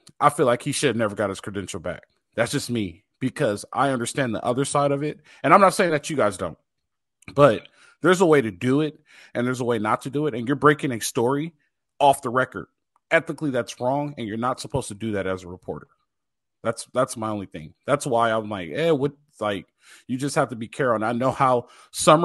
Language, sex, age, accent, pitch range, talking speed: English, male, 30-49, American, 120-150 Hz, 245 wpm